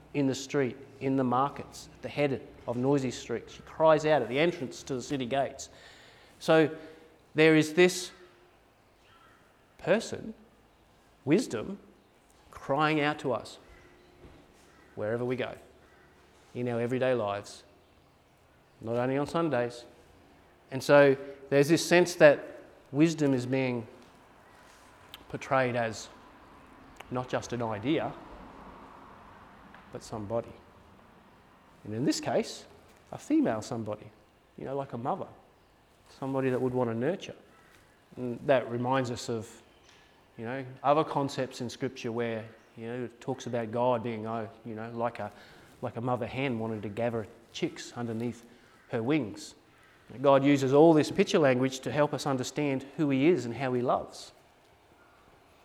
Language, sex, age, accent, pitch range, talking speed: English, male, 30-49, Australian, 115-140 Hz, 140 wpm